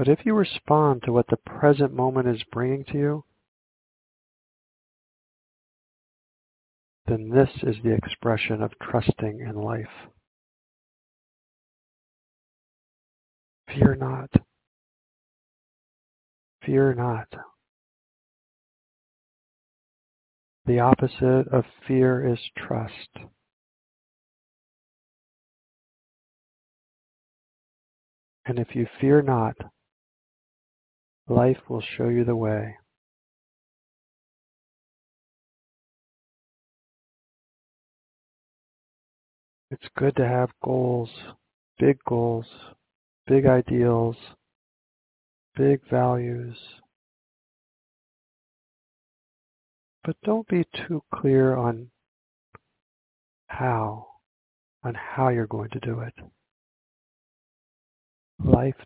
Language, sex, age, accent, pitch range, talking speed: English, male, 50-69, American, 110-130 Hz, 70 wpm